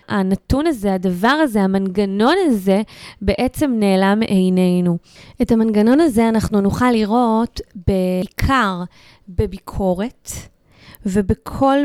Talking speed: 90 wpm